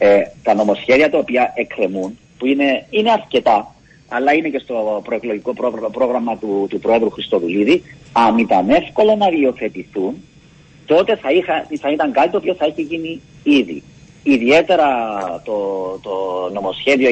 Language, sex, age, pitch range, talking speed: Greek, male, 40-59, 120-175 Hz, 145 wpm